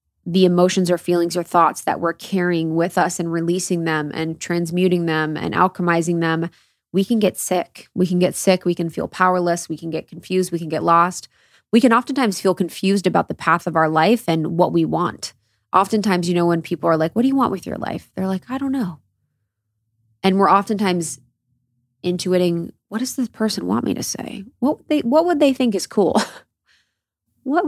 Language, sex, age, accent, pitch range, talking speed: English, female, 20-39, American, 165-205 Hz, 205 wpm